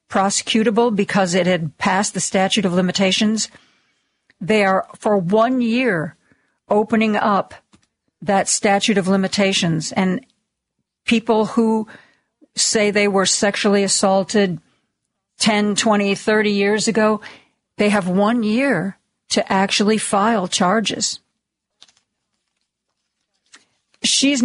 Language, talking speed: English, 105 wpm